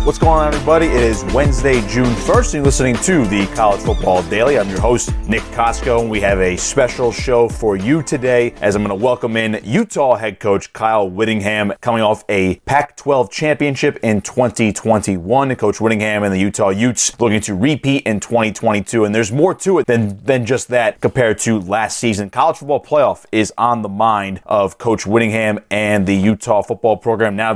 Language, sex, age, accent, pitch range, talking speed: English, male, 30-49, American, 110-145 Hz, 195 wpm